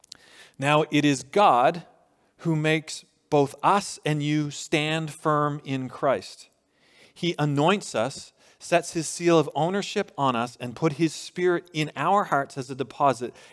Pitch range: 140-170 Hz